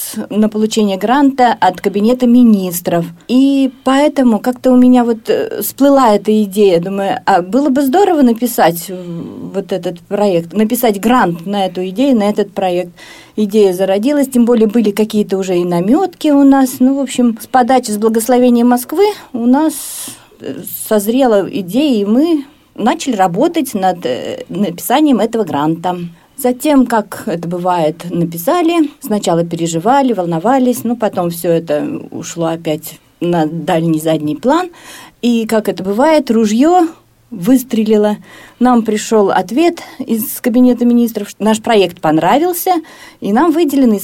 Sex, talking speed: female, 135 wpm